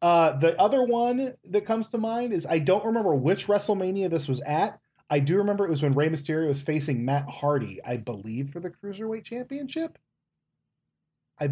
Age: 20-39